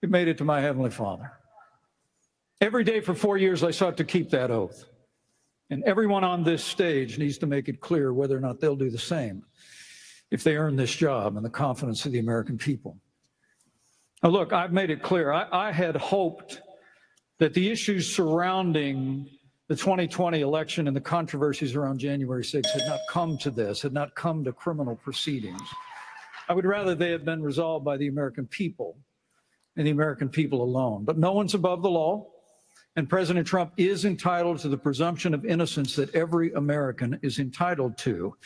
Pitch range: 145-180 Hz